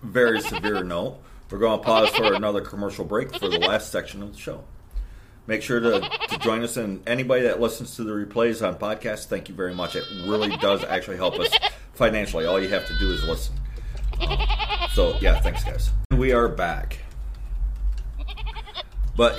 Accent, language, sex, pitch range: American, English, male, 105-135 Hz